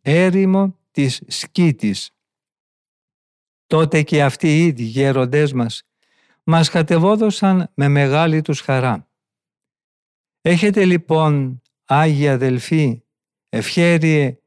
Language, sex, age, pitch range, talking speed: Greek, male, 50-69, 130-165 Hz, 85 wpm